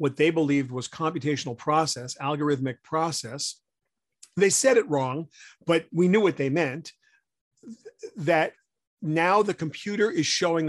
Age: 40-59